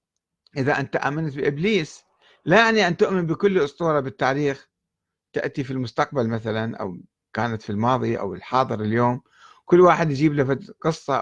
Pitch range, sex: 115-160 Hz, male